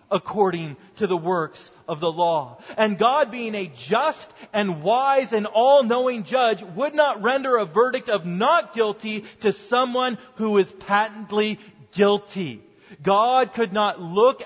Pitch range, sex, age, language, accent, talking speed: 150-220 Hz, male, 30-49, English, American, 145 wpm